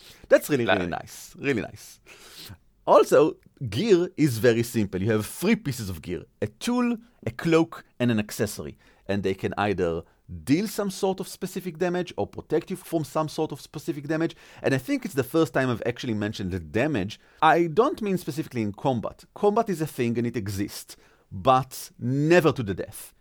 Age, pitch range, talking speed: 40-59, 115-175 Hz, 190 wpm